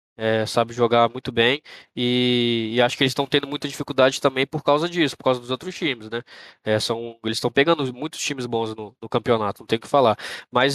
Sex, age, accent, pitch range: male, 10-29, Brazilian, 125-145 Hz